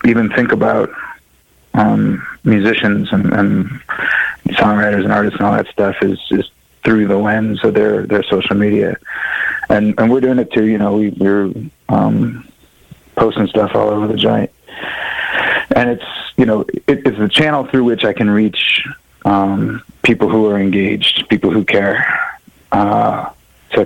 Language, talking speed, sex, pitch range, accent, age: English, 160 wpm, male, 100-115 Hz, American, 30-49